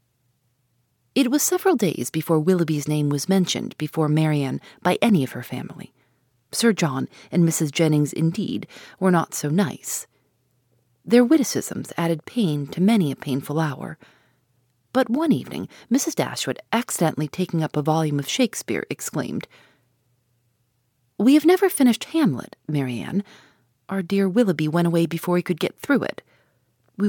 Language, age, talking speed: English, 40-59, 145 wpm